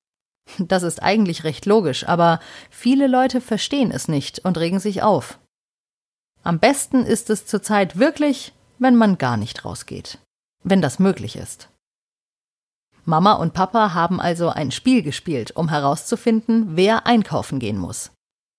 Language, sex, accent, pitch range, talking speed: German, female, German, 165-235 Hz, 140 wpm